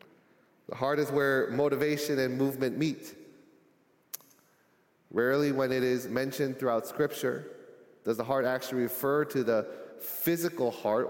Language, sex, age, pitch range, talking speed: English, male, 30-49, 135-185 Hz, 130 wpm